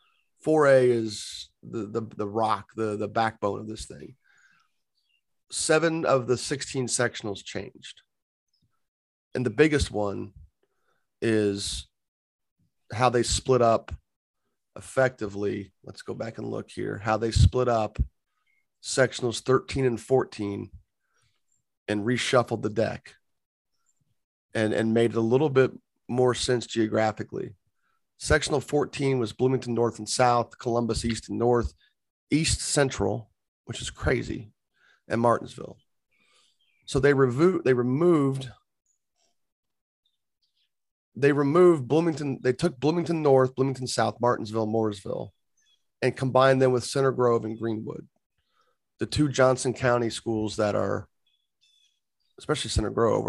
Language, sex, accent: English, male, American